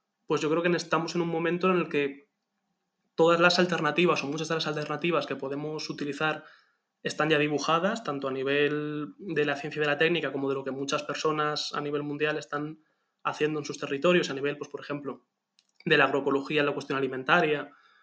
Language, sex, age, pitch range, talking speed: Spanish, male, 20-39, 145-165 Hz, 205 wpm